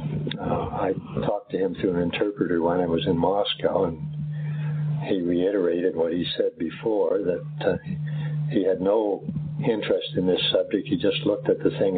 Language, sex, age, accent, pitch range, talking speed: English, male, 60-79, American, 150-160 Hz, 175 wpm